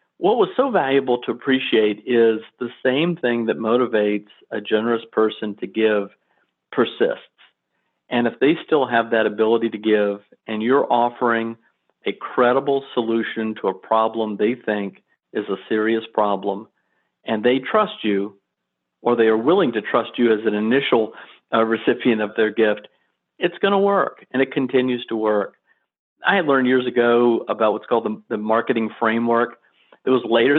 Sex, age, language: male, 50-69, English